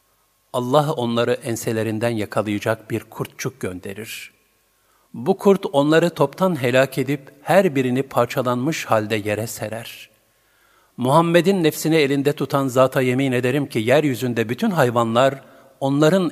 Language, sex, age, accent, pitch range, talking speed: Turkish, male, 50-69, native, 110-150 Hz, 115 wpm